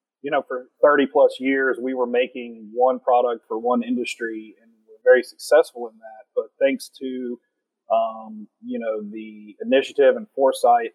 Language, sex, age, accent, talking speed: English, male, 30-49, American, 170 wpm